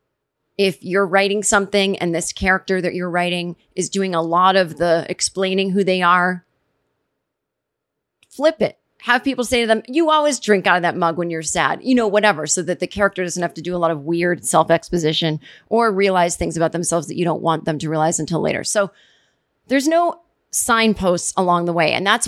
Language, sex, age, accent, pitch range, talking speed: English, female, 30-49, American, 180-245 Hz, 205 wpm